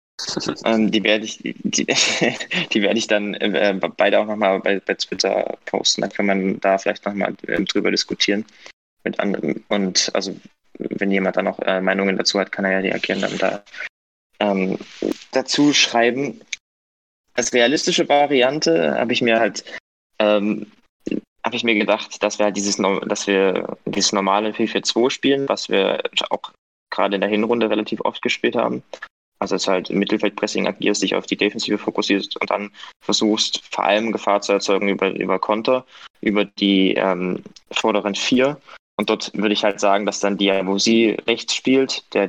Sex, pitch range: male, 95-110 Hz